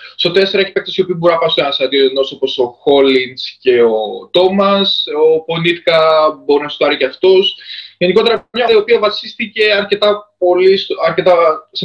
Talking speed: 185 wpm